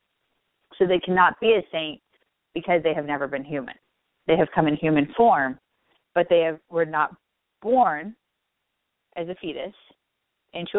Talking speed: 150 wpm